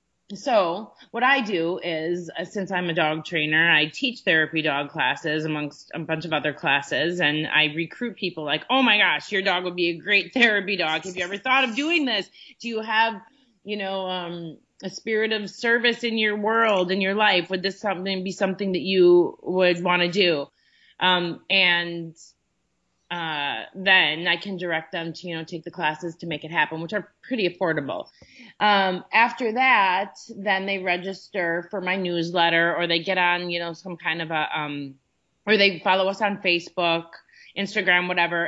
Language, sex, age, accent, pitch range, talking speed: English, female, 30-49, American, 170-210 Hz, 190 wpm